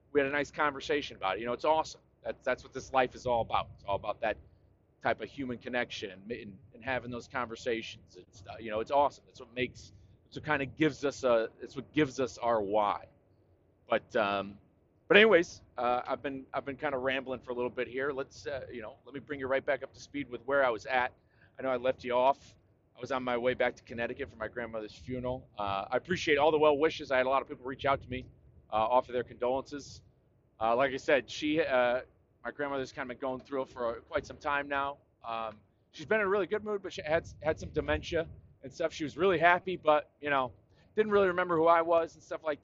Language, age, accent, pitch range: English, 40-59, American, 115-145 Hz